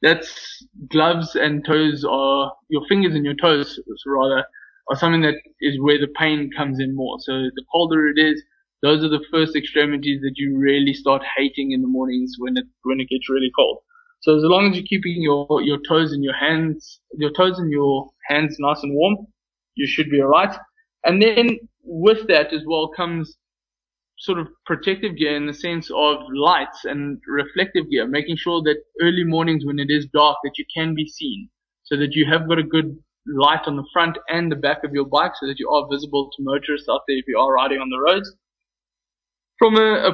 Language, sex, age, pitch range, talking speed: English, male, 20-39, 145-170 Hz, 210 wpm